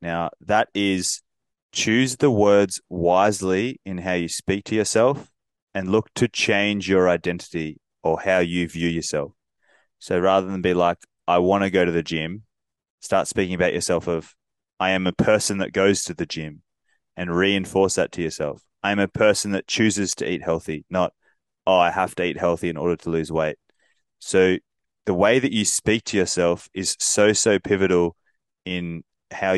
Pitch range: 85-100 Hz